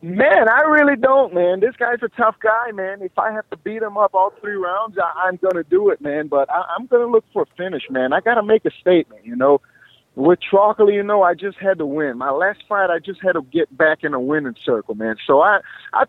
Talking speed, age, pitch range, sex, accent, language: 270 wpm, 30-49, 140-195 Hz, male, American, English